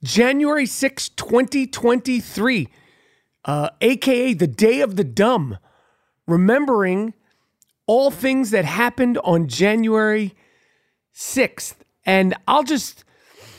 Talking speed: 95 wpm